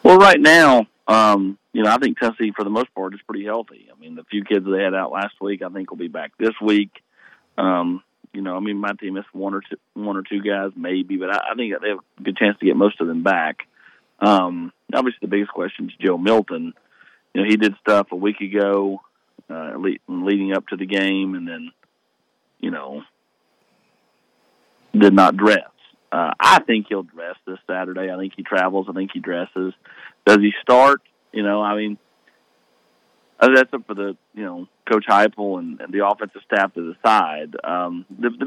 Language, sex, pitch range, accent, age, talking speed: English, male, 90-105 Hz, American, 40-59, 205 wpm